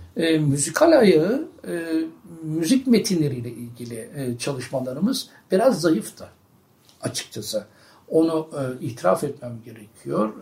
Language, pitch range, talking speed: Turkish, 135-190 Hz, 100 wpm